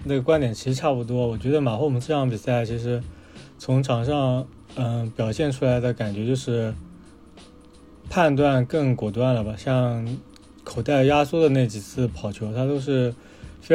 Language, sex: Chinese, male